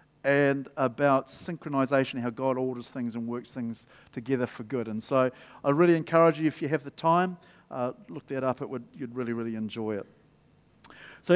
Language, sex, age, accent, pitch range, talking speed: English, male, 50-69, Australian, 130-165 Hz, 190 wpm